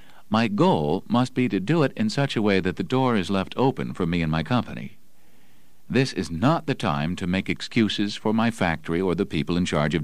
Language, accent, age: English, American, 50-69